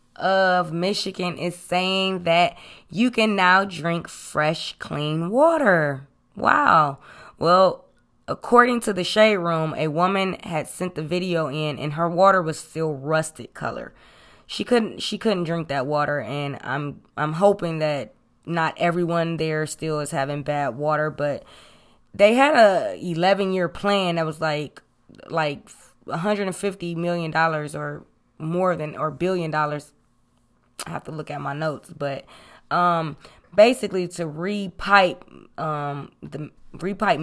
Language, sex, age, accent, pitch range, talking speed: English, female, 20-39, American, 145-180 Hz, 140 wpm